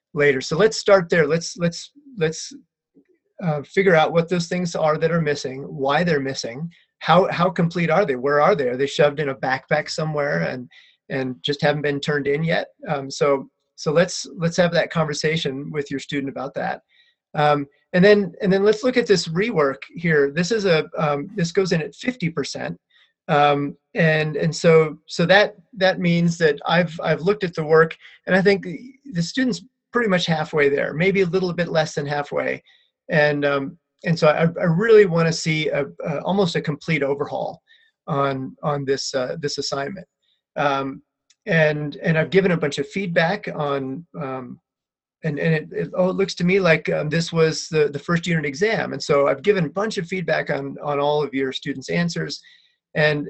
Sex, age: male, 30-49